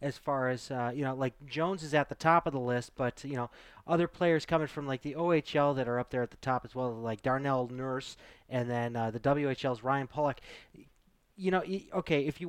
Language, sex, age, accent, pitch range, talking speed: English, male, 30-49, American, 130-165 Hz, 235 wpm